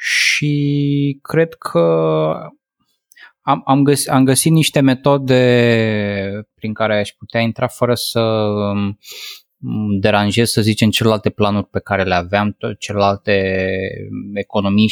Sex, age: male, 20-39